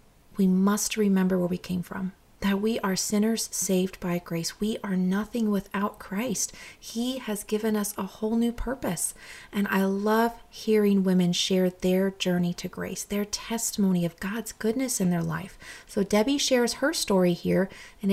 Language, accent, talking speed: English, American, 170 wpm